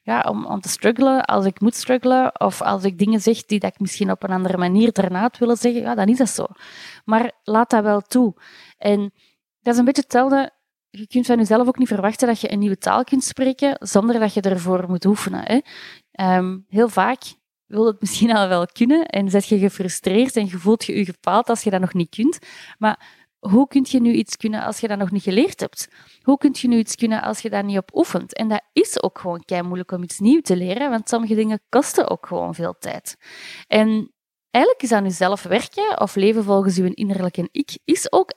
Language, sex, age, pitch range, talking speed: Dutch, female, 30-49, 190-235 Hz, 230 wpm